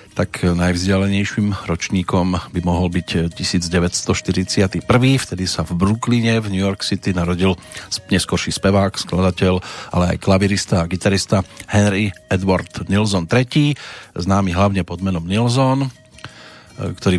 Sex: male